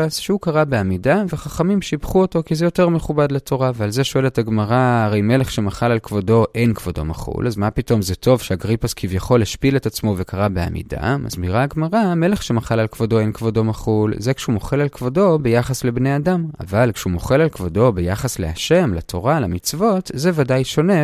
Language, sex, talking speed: Hebrew, male, 185 wpm